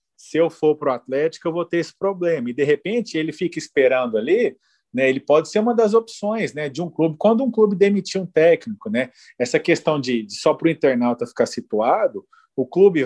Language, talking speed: Portuguese, 220 wpm